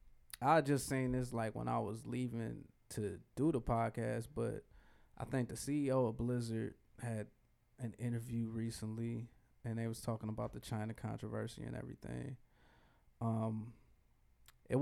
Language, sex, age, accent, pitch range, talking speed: English, male, 20-39, American, 115-130 Hz, 145 wpm